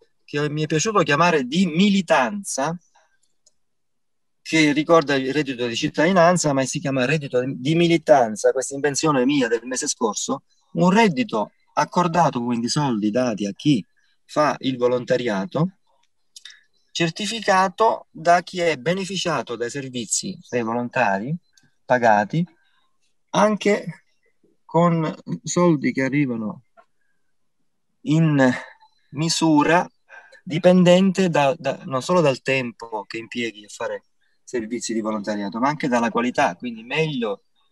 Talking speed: 115 wpm